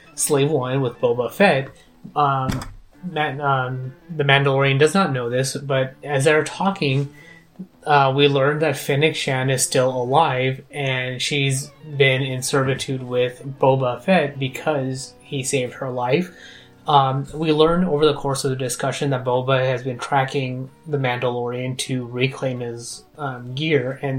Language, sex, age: English, male, 20-39